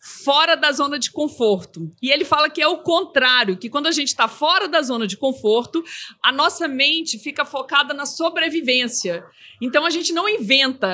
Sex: female